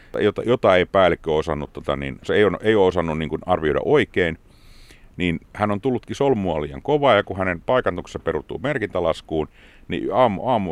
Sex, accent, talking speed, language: male, native, 180 wpm, Finnish